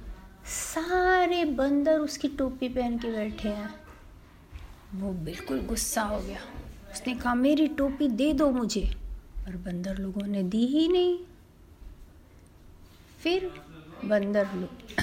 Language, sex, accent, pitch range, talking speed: Hindi, female, native, 200-280 Hz, 120 wpm